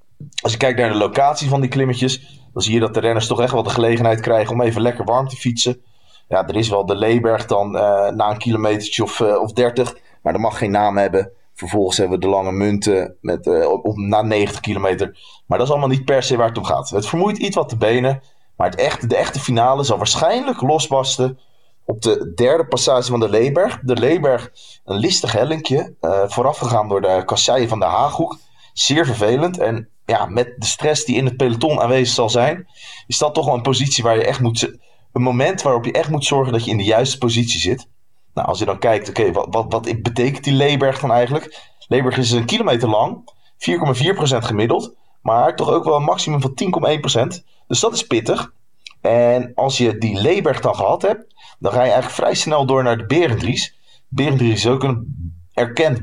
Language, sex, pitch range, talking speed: Dutch, male, 110-135 Hz, 215 wpm